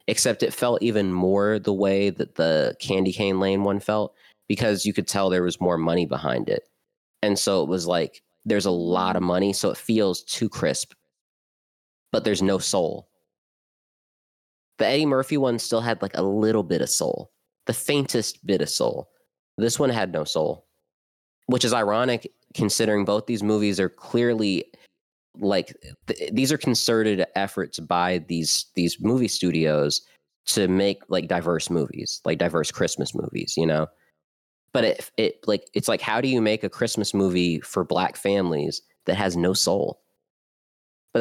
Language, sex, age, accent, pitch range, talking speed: English, male, 20-39, American, 90-110 Hz, 170 wpm